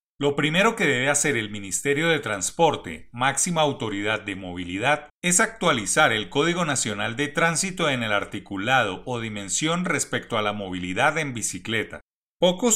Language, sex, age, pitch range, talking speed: Spanish, male, 40-59, 120-165 Hz, 150 wpm